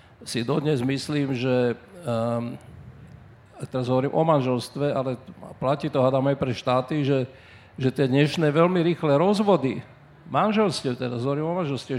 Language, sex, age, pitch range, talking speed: Slovak, male, 50-69, 130-160 Hz, 140 wpm